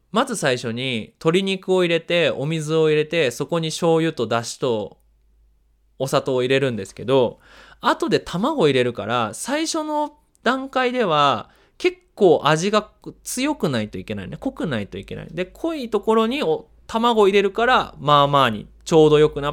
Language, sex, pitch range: Japanese, male, 115-180 Hz